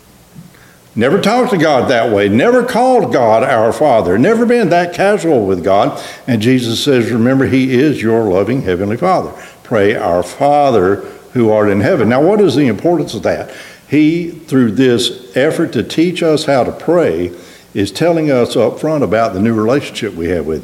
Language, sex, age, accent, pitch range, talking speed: English, male, 60-79, American, 100-160 Hz, 185 wpm